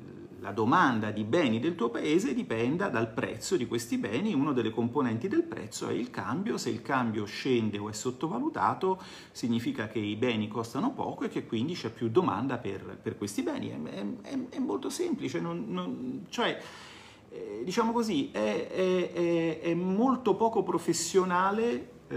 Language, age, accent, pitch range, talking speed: Italian, 40-59, native, 110-175 Hz, 170 wpm